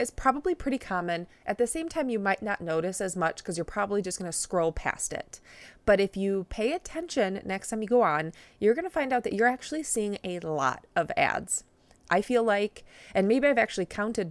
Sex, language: female, English